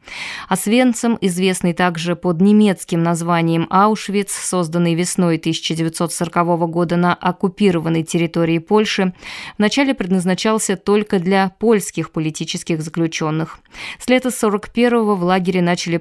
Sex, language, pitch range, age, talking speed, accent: female, Russian, 170-205 Hz, 20-39, 105 wpm, native